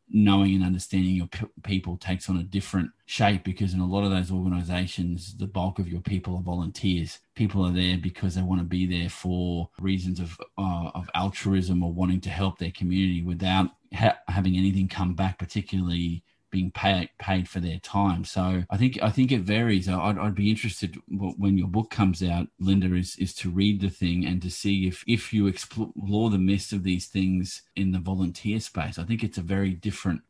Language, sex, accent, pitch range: English, male, Australian, 90-100 Hz